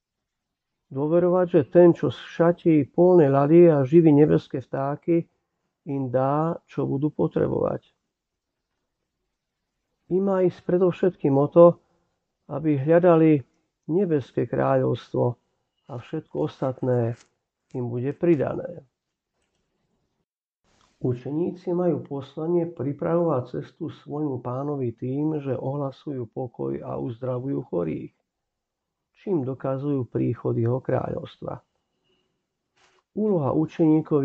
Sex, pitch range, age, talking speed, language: male, 130-165 Hz, 50-69, 90 wpm, Slovak